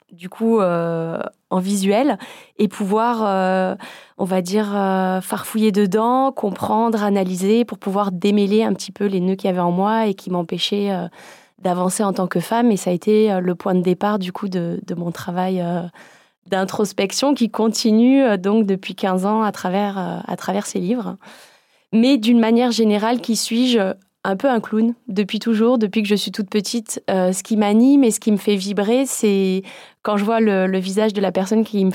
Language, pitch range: French, 185-220 Hz